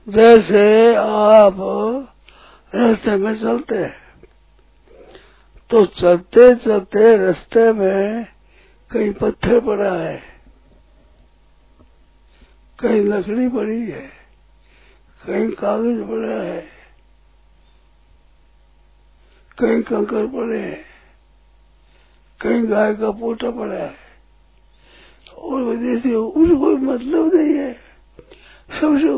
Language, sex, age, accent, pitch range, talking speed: Hindi, male, 60-79, native, 190-250 Hz, 85 wpm